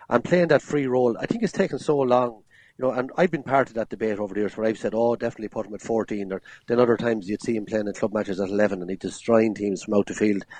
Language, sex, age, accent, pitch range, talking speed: English, male, 30-49, Irish, 105-130 Hz, 300 wpm